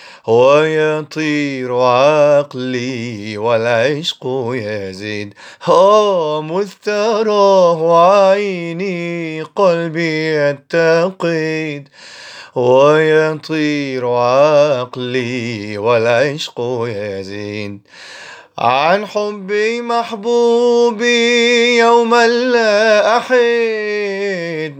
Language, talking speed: Arabic, 45 wpm